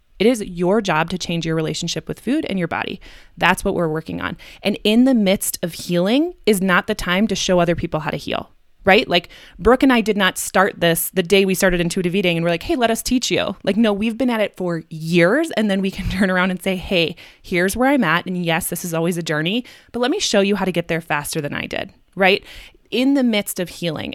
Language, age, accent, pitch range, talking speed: English, 20-39, American, 170-220 Hz, 260 wpm